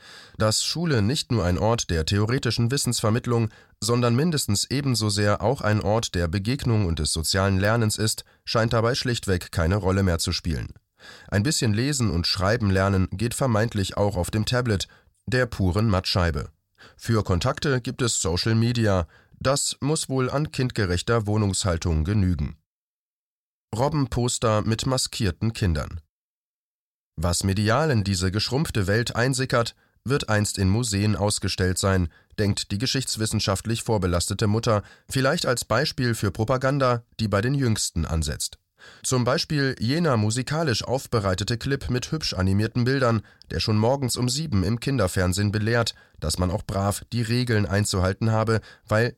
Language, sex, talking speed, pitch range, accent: German, male, 145 wpm, 100-120 Hz, German